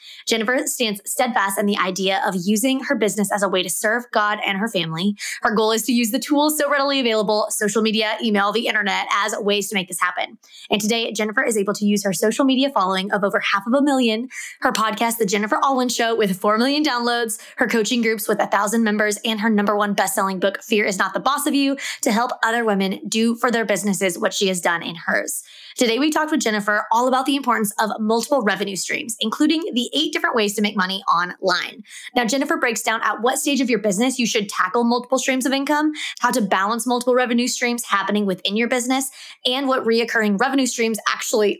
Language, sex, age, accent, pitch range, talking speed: English, female, 20-39, American, 210-260 Hz, 225 wpm